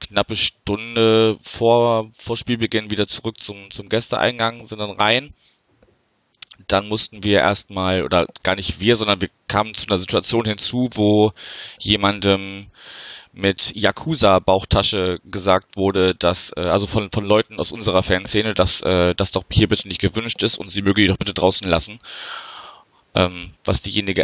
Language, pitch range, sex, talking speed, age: German, 90-110 Hz, male, 155 wpm, 20-39